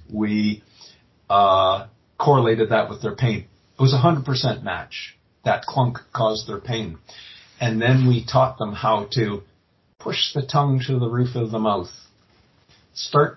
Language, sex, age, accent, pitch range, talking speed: Italian, male, 50-69, American, 110-135 Hz, 150 wpm